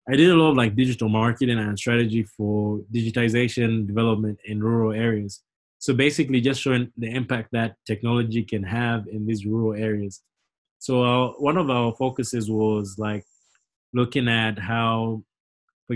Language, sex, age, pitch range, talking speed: English, male, 20-39, 105-120 Hz, 155 wpm